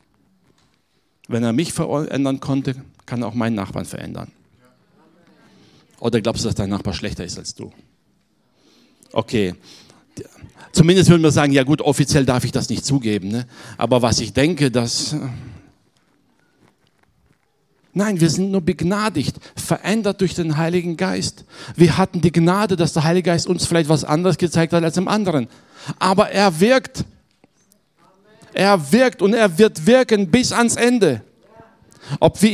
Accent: German